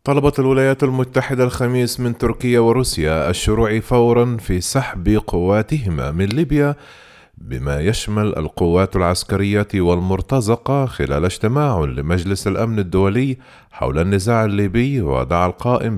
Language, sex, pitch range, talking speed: Arabic, male, 85-115 Hz, 110 wpm